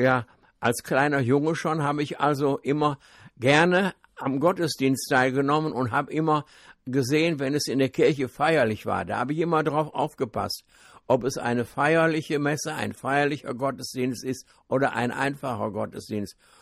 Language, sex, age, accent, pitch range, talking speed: German, male, 60-79, German, 125-150 Hz, 155 wpm